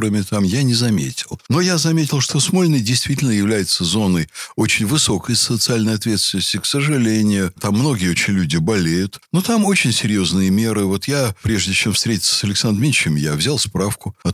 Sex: male